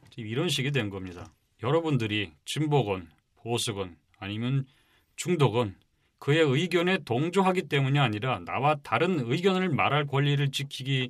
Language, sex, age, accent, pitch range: Korean, male, 40-59, native, 105-145 Hz